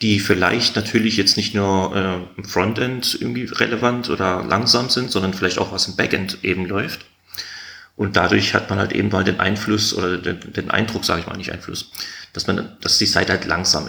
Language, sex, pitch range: German, male, 95-110 Hz